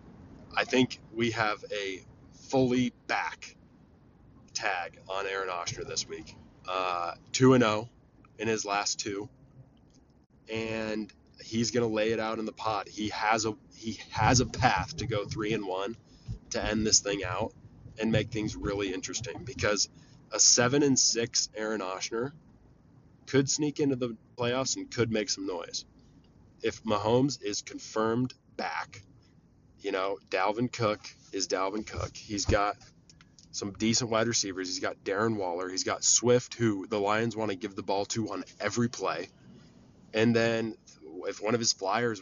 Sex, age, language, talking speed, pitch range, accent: male, 20-39, English, 160 wpm, 100-120 Hz, American